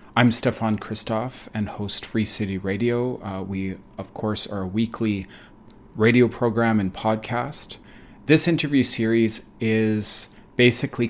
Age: 40-59